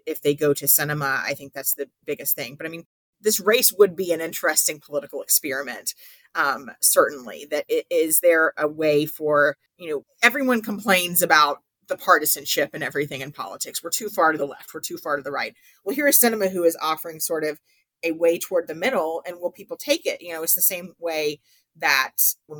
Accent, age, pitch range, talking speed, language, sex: American, 40-59, 150-210 Hz, 210 wpm, English, female